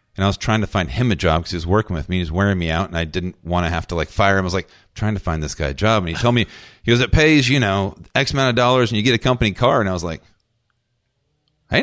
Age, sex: 40-59, male